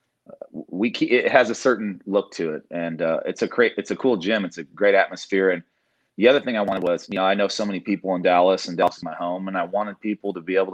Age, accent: 30-49, American